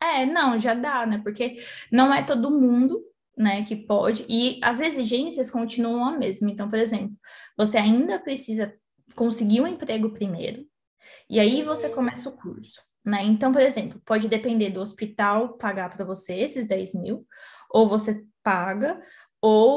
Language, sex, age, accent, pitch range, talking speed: Portuguese, female, 10-29, Brazilian, 205-250 Hz, 160 wpm